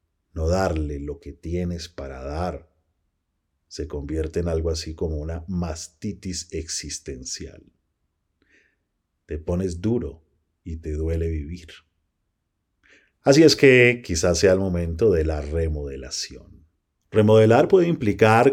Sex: male